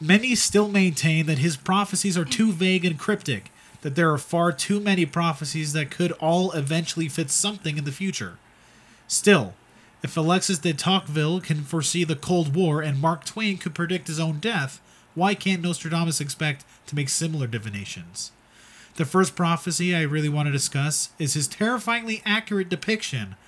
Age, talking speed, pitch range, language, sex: 30-49, 170 wpm, 135-170 Hz, English, male